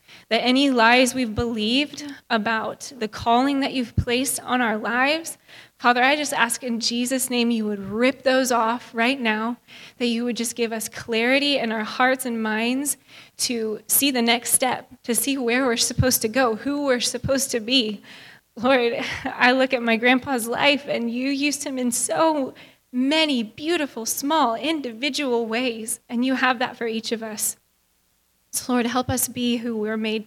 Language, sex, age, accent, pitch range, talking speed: English, female, 20-39, American, 220-255 Hz, 180 wpm